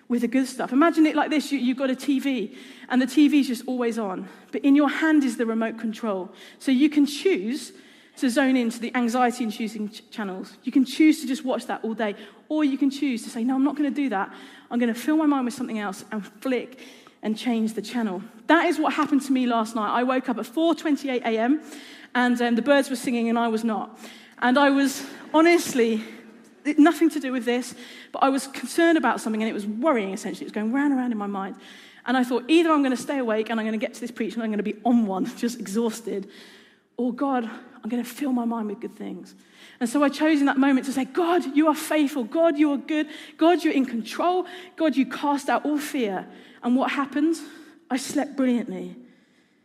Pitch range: 230-290 Hz